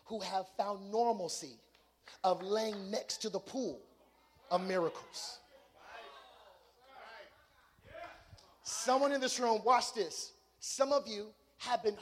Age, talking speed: 30-49, 115 wpm